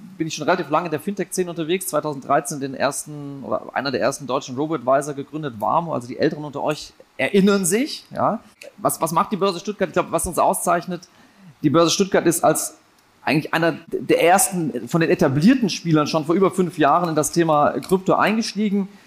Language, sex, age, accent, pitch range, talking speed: German, male, 40-59, German, 150-185 Hz, 200 wpm